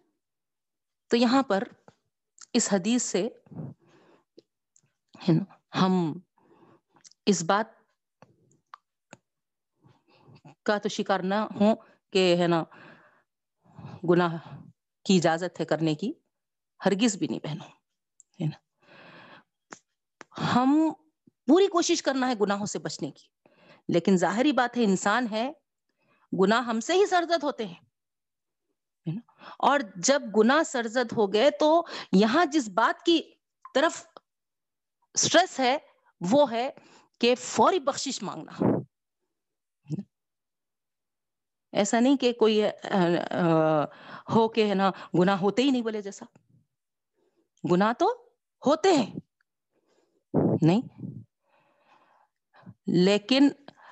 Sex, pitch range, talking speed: female, 185-280 Hz, 100 wpm